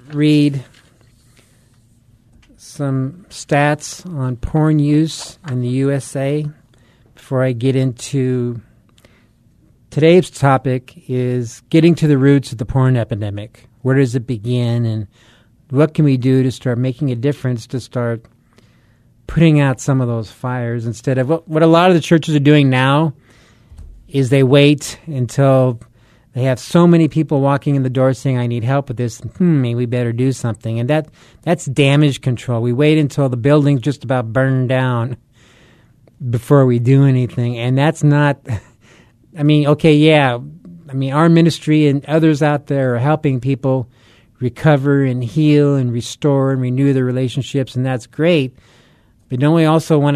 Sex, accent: male, American